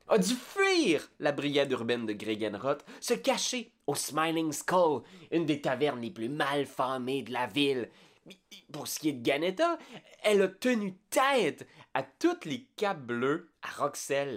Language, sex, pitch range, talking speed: French, male, 105-150 Hz, 165 wpm